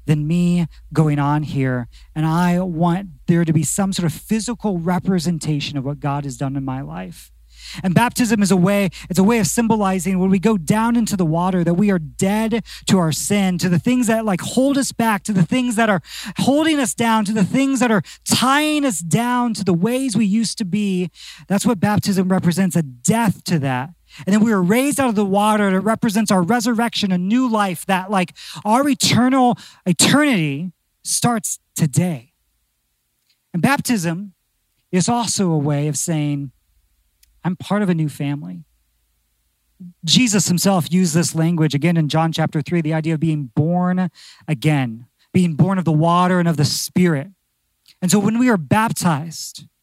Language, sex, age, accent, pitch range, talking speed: English, male, 40-59, American, 155-215 Hz, 190 wpm